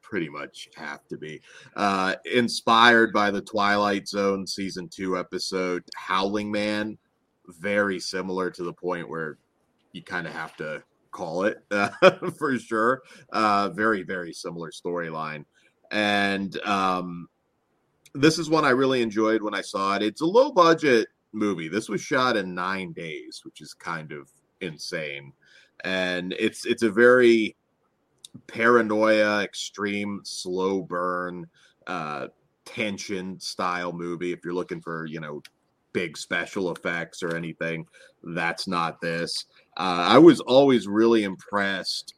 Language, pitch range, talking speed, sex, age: English, 85-110 Hz, 140 wpm, male, 30-49